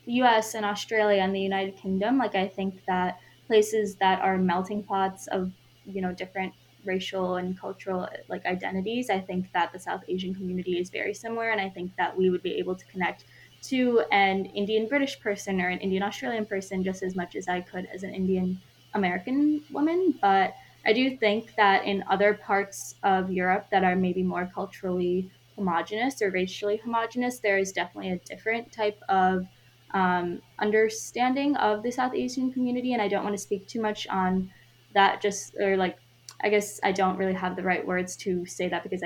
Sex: female